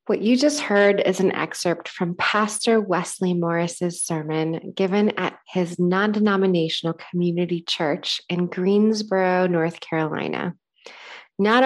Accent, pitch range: American, 165-195 Hz